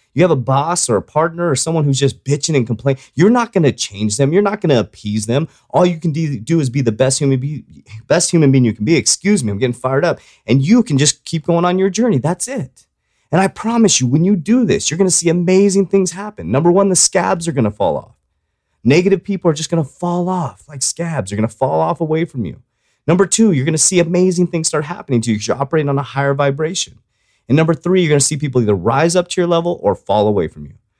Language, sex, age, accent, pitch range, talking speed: English, male, 30-49, American, 115-170 Hz, 265 wpm